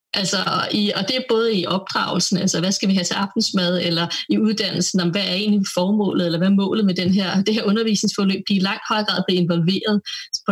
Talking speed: 220 wpm